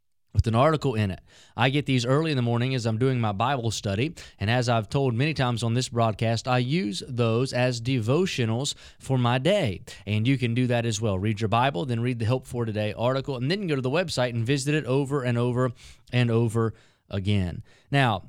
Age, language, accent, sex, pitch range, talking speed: 30-49, English, American, male, 120-155 Hz, 225 wpm